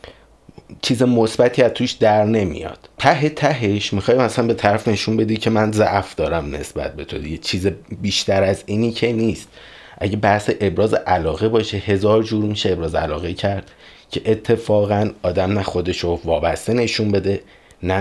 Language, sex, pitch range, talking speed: Persian, male, 95-115 Hz, 160 wpm